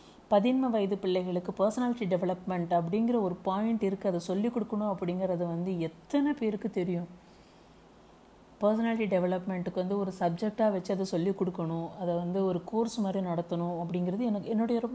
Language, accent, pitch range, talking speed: Tamil, native, 175-220 Hz, 140 wpm